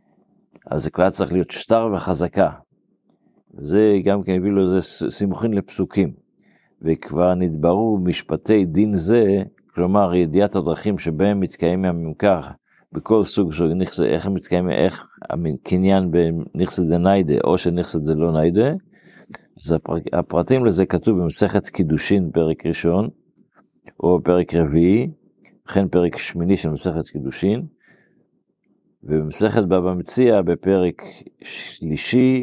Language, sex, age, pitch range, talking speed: Hebrew, male, 50-69, 85-105 Hz, 120 wpm